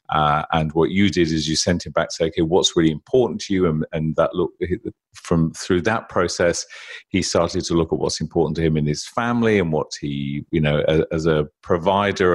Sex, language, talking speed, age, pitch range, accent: male, English, 230 wpm, 40-59, 80-105 Hz, British